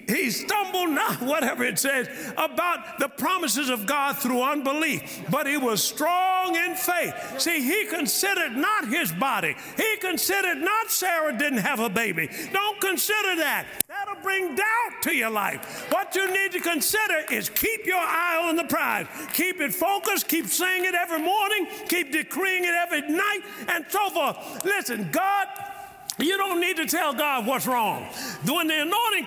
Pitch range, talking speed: 290-360 Hz, 170 wpm